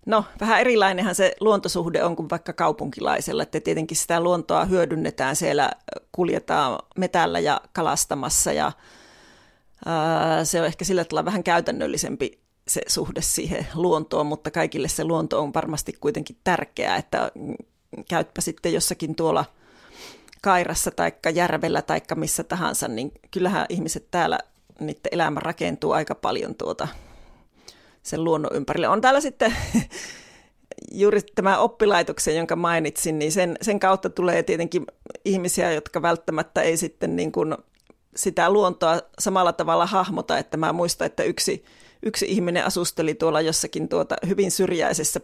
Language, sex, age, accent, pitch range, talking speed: Finnish, female, 30-49, native, 165-195 Hz, 135 wpm